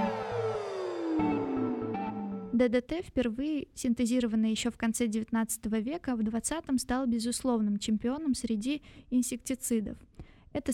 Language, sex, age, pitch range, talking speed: Russian, female, 20-39, 225-255 Hz, 90 wpm